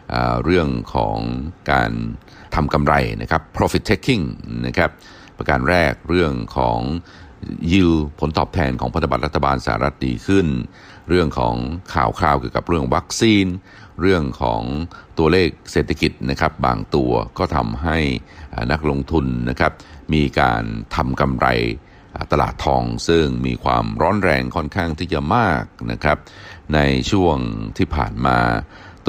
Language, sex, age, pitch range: Thai, male, 60-79, 65-85 Hz